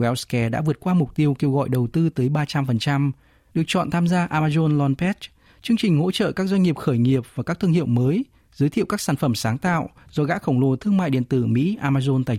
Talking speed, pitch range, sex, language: 240 wpm, 120-160 Hz, male, Vietnamese